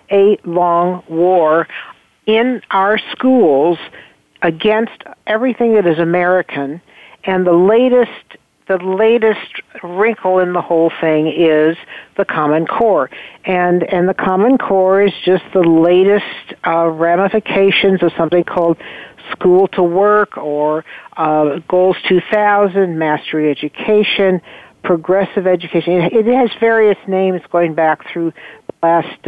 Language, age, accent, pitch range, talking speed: English, 60-79, American, 170-205 Hz, 120 wpm